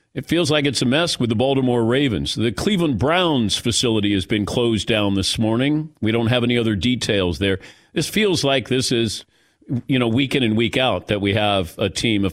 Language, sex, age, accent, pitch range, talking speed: English, male, 50-69, American, 110-145 Hz, 220 wpm